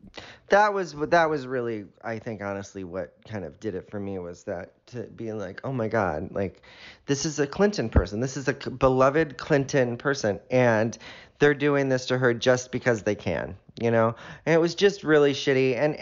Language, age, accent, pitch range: English, 30-49, American, 115-160 Hz